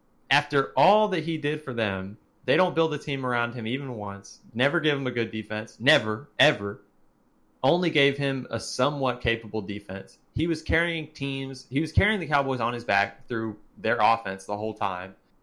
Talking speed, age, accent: 190 wpm, 30-49, American